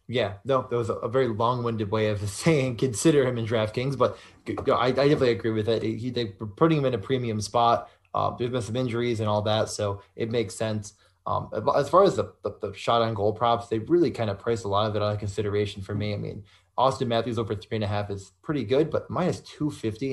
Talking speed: 240 wpm